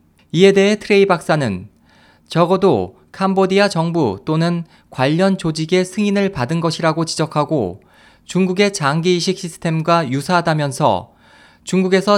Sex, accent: male, native